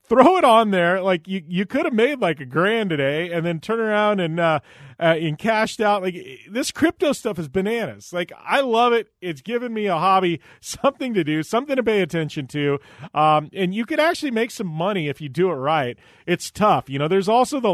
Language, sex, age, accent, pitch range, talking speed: English, male, 30-49, American, 140-195 Hz, 230 wpm